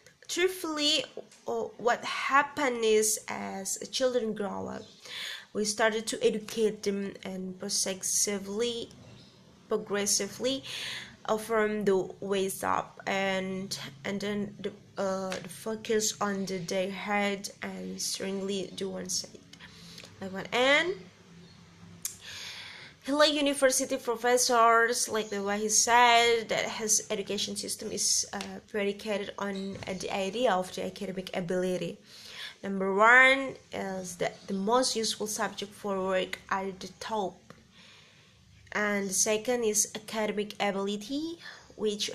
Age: 20-39